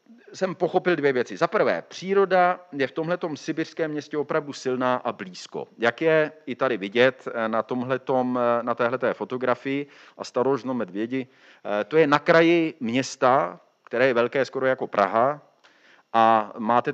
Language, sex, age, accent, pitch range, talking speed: Czech, male, 40-59, native, 115-145 Hz, 145 wpm